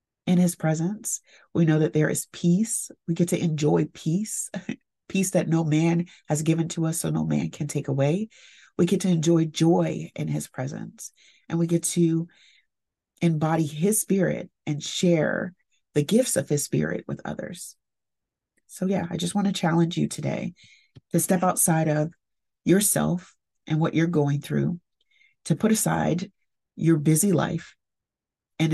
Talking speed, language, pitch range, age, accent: 165 wpm, English, 150-180 Hz, 30-49, American